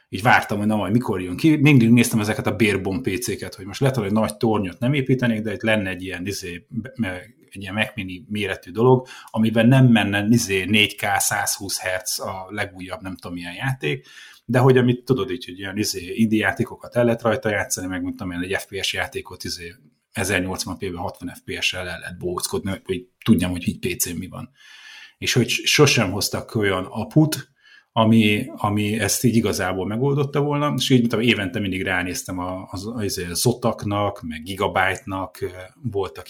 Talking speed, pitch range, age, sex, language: 165 wpm, 95-120 Hz, 30-49, male, Hungarian